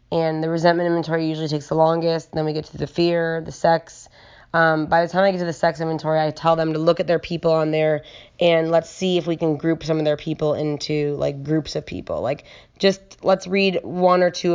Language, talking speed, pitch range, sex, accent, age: English, 245 wpm, 155-180 Hz, female, American, 20-39